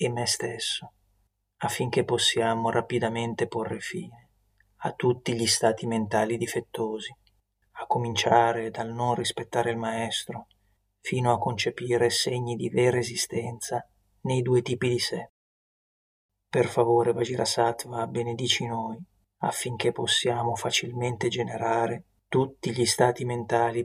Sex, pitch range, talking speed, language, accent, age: male, 115-120 Hz, 115 wpm, Italian, native, 30-49